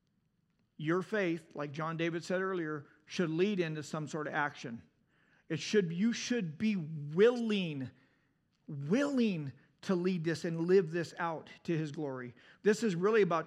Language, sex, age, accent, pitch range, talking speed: English, male, 40-59, American, 160-195 Hz, 155 wpm